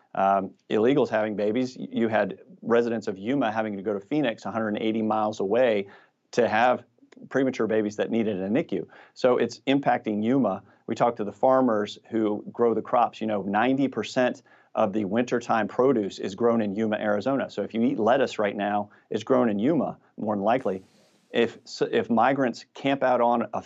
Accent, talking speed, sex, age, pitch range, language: American, 180 wpm, male, 40-59, 105-120 Hz, English